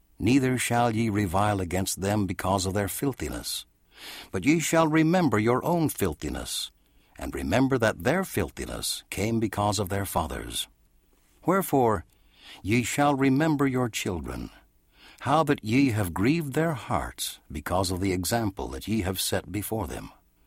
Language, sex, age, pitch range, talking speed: English, male, 60-79, 85-125 Hz, 145 wpm